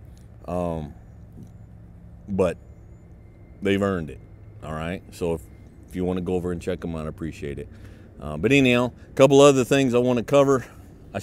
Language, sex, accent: English, male, American